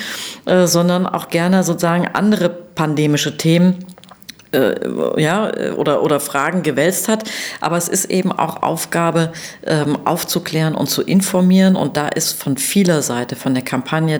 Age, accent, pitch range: 40-59, German, 140-175 Hz